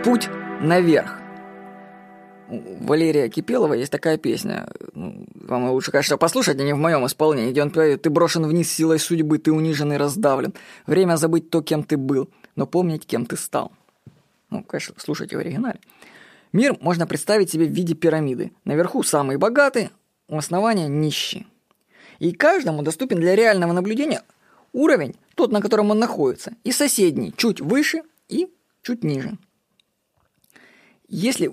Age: 20-39